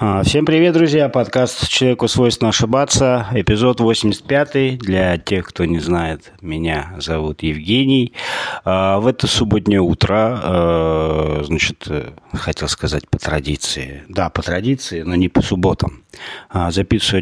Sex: male